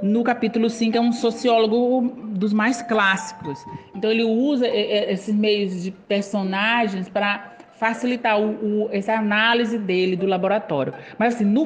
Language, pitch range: Portuguese, 195-230 Hz